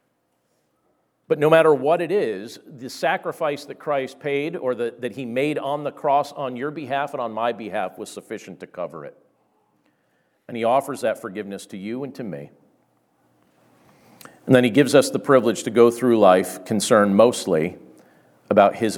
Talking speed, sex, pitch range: 175 wpm, male, 110-145 Hz